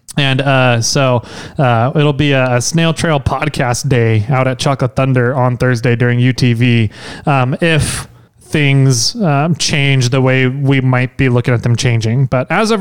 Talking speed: 175 wpm